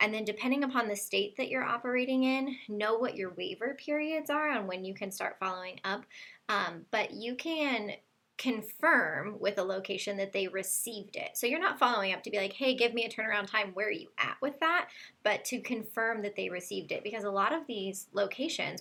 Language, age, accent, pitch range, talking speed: English, 10-29, American, 200-255 Hz, 215 wpm